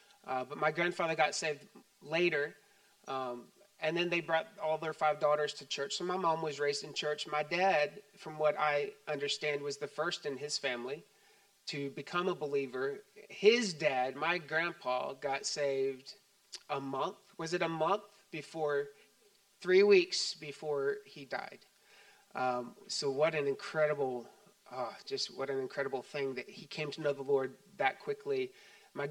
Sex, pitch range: male, 145-200 Hz